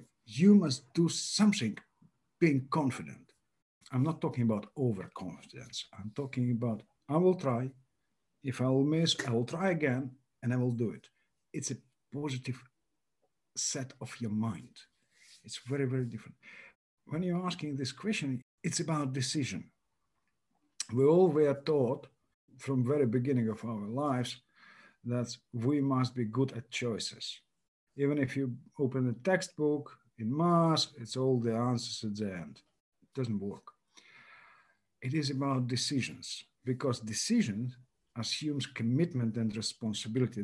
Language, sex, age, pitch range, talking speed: English, male, 50-69, 115-150 Hz, 140 wpm